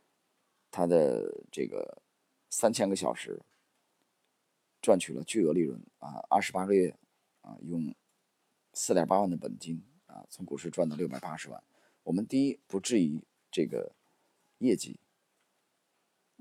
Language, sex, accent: Chinese, male, native